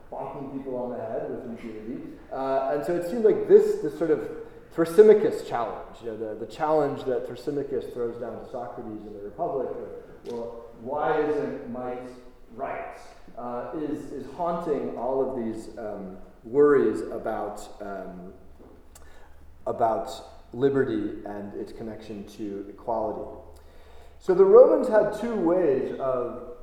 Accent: American